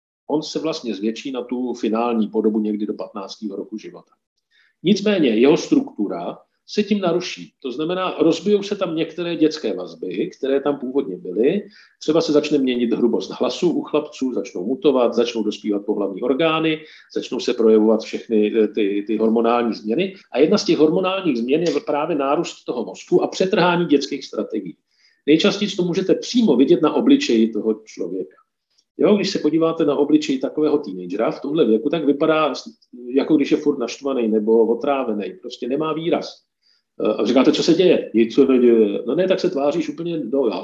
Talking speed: 170 wpm